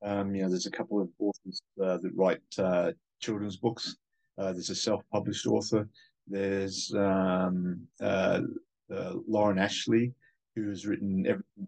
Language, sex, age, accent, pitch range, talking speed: English, male, 30-49, Australian, 100-110 Hz, 150 wpm